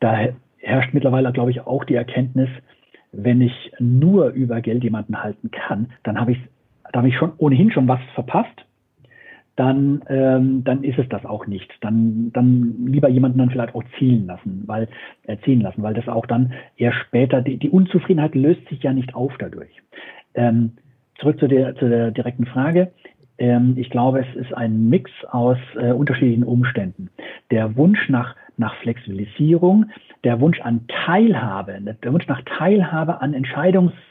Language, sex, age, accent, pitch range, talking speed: German, male, 50-69, German, 115-135 Hz, 170 wpm